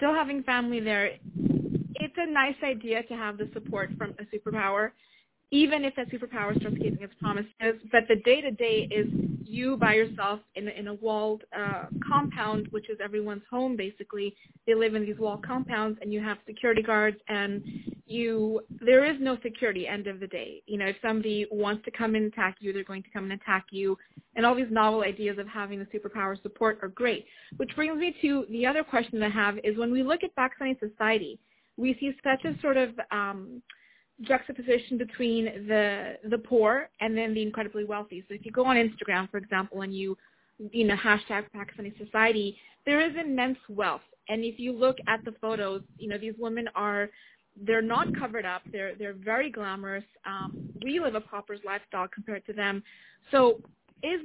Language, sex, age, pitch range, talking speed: English, female, 30-49, 205-245 Hz, 195 wpm